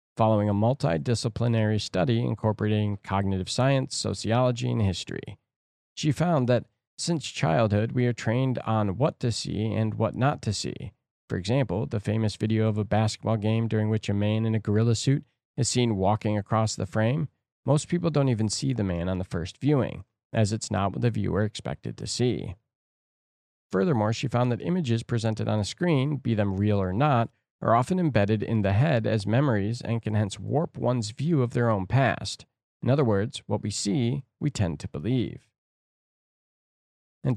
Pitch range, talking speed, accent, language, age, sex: 105-125 Hz, 180 wpm, American, English, 40-59, male